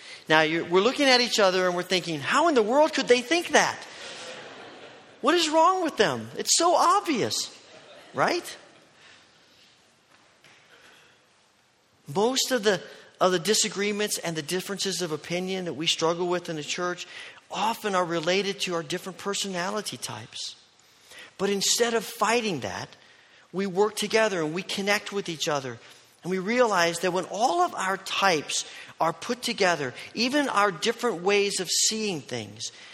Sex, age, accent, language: male, 40-59, American, English